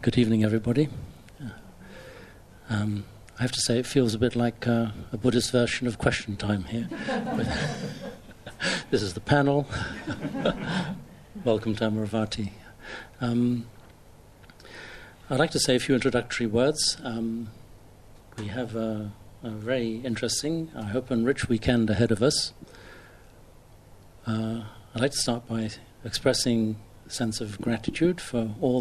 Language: English